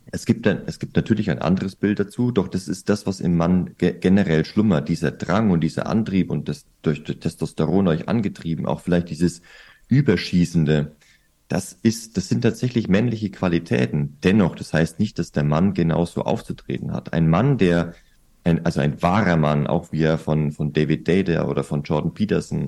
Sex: male